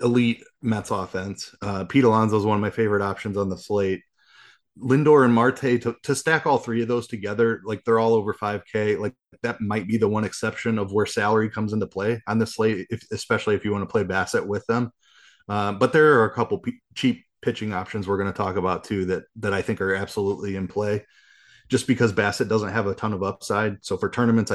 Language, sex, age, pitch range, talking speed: English, male, 30-49, 100-115 Hz, 220 wpm